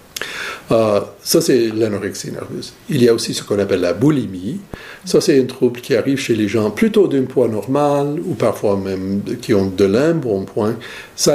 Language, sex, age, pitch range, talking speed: French, male, 60-79, 100-135 Hz, 200 wpm